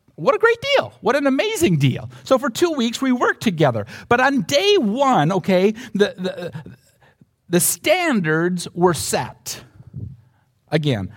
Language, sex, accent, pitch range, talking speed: English, male, American, 120-155 Hz, 145 wpm